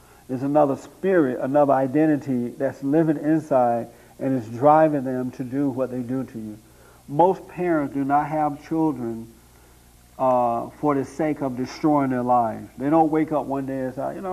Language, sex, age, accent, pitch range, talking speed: English, male, 60-79, American, 125-155 Hz, 180 wpm